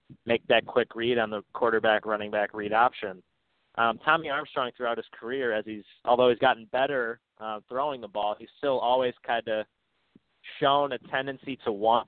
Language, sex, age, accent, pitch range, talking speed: English, male, 20-39, American, 105-120 Hz, 185 wpm